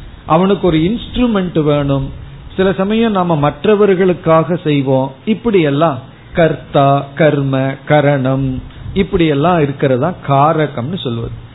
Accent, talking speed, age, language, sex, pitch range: native, 100 wpm, 50-69, Tamil, male, 135-190 Hz